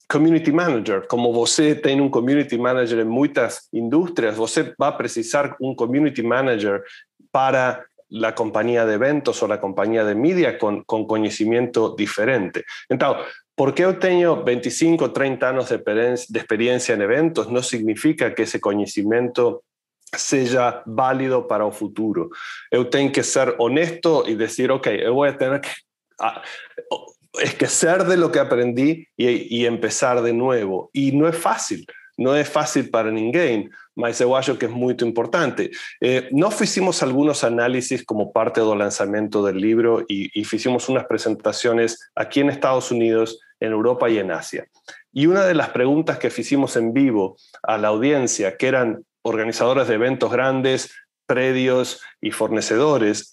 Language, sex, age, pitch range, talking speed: Portuguese, male, 40-59, 115-140 Hz, 155 wpm